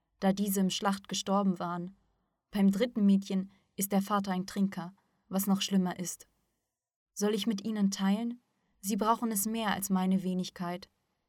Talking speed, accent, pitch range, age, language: 160 wpm, German, 185-205 Hz, 20-39, German